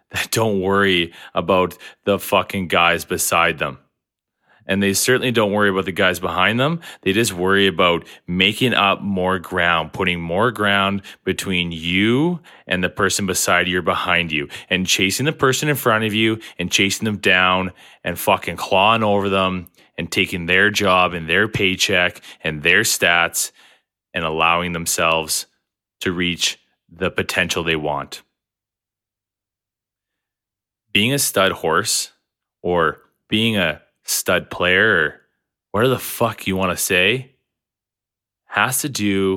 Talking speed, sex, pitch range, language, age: 145 wpm, male, 90-110 Hz, English, 20-39